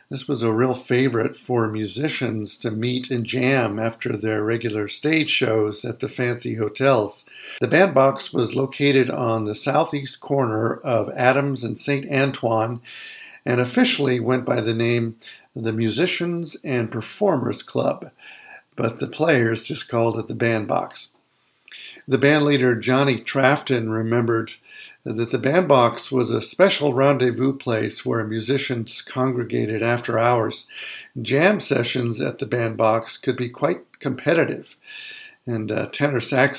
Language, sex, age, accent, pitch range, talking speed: English, male, 50-69, American, 115-140 Hz, 140 wpm